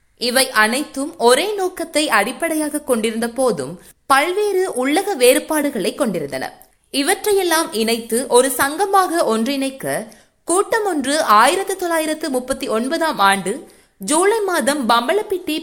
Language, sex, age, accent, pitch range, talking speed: Tamil, female, 20-39, native, 230-330 Hz, 100 wpm